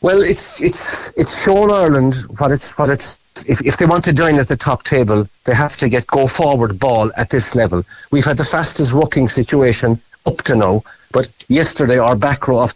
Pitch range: 120-155 Hz